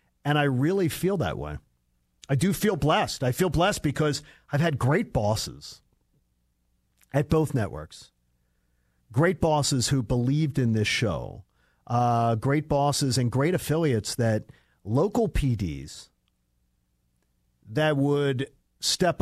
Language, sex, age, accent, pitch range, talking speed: English, male, 50-69, American, 95-150 Hz, 125 wpm